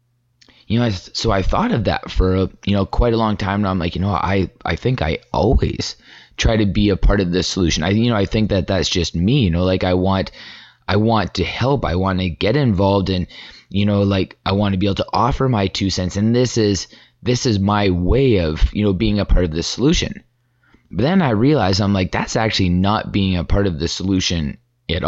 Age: 20-39